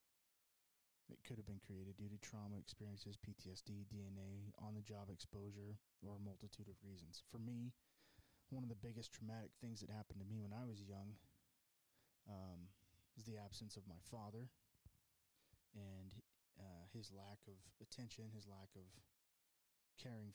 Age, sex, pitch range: 20-39, male, 95-110 Hz